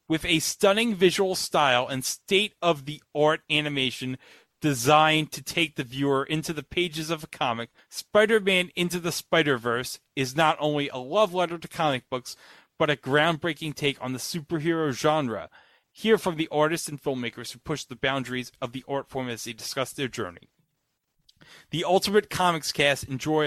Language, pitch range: English, 125-165 Hz